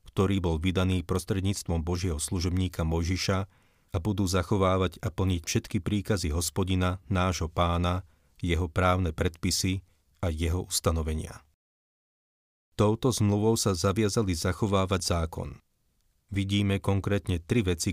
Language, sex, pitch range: Slovak, male, 85-100 Hz